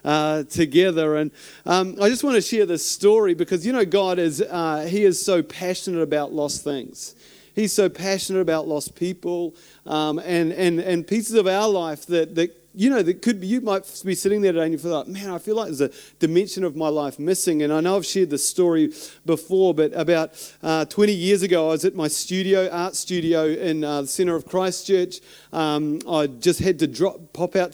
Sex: male